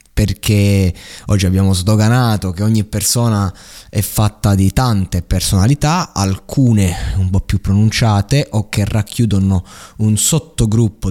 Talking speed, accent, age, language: 120 wpm, native, 20-39, Italian